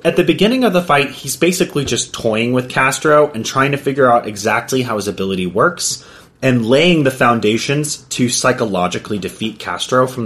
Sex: male